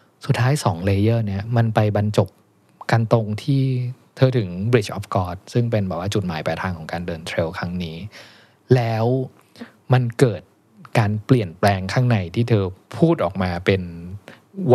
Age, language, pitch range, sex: 20-39, Thai, 95-120 Hz, male